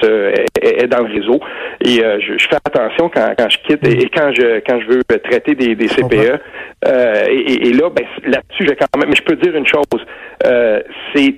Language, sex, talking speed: French, male, 235 wpm